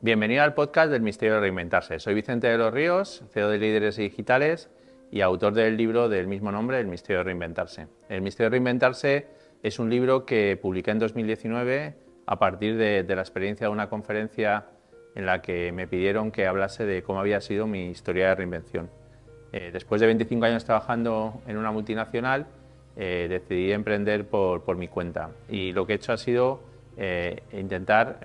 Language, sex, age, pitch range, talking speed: Spanish, male, 30-49, 95-115 Hz, 185 wpm